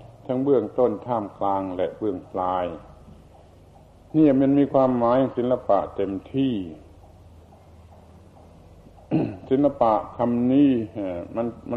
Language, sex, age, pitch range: Thai, male, 70-89, 95-125 Hz